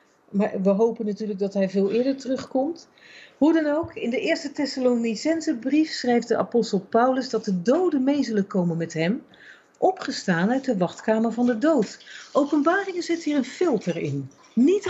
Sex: female